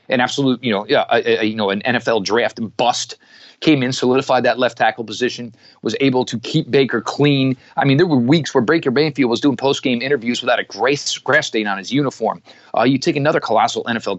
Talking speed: 215 wpm